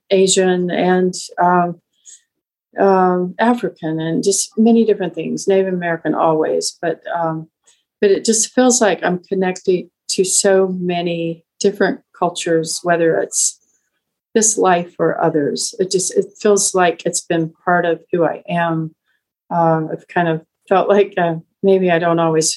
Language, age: English, 40-59